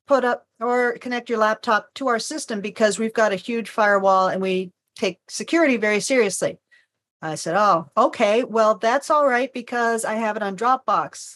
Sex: female